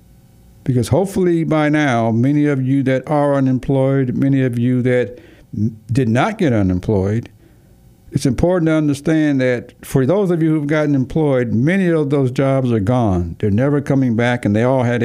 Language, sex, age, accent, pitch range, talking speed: English, male, 60-79, American, 110-145 Hz, 175 wpm